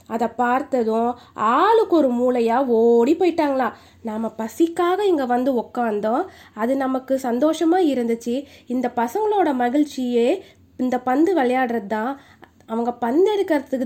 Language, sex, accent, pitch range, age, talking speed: Tamil, female, native, 230-300 Hz, 20-39, 110 wpm